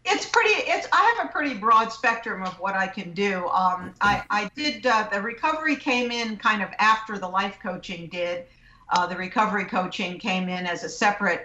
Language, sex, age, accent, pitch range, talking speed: English, female, 50-69, American, 175-200 Hz, 205 wpm